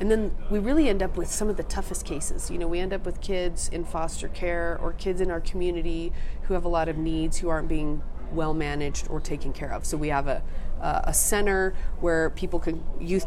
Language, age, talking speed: English, 40-59, 235 wpm